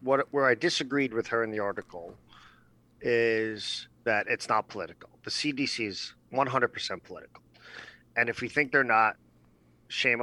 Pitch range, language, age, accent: 105-125 Hz, English, 40-59, American